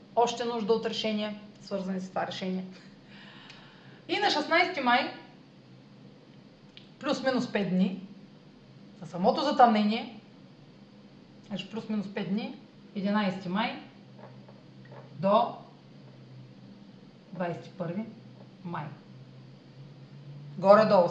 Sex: female